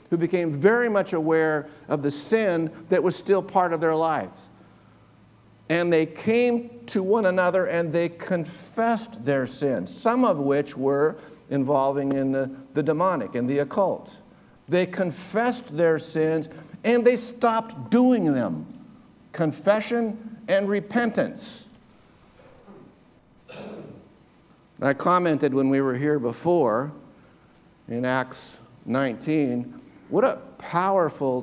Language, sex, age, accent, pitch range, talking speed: English, male, 60-79, American, 140-195 Hz, 120 wpm